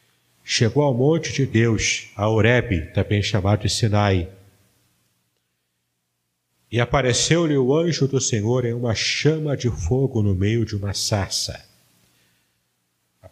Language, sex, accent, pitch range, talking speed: Portuguese, male, Brazilian, 100-130 Hz, 125 wpm